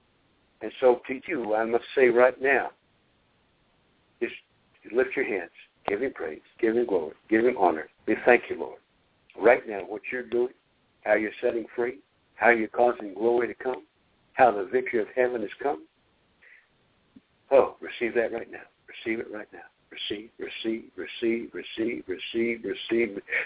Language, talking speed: English, 160 wpm